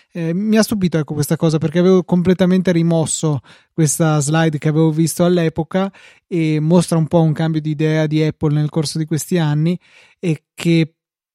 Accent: native